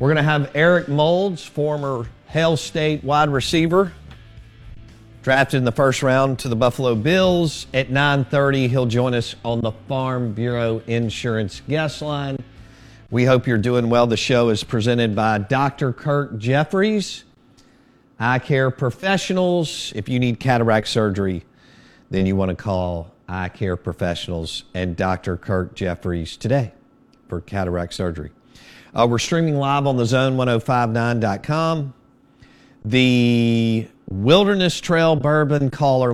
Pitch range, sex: 105-135 Hz, male